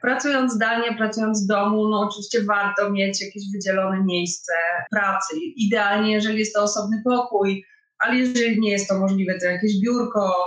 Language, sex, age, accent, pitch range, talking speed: Polish, female, 30-49, native, 190-220 Hz, 160 wpm